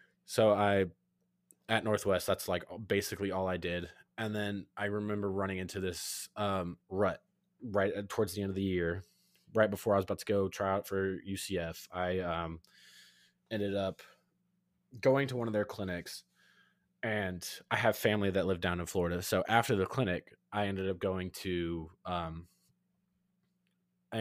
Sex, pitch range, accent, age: male, 85-105 Hz, American, 20-39